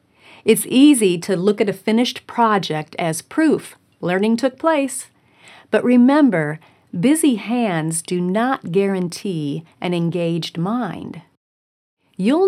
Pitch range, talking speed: 175-240 Hz, 115 wpm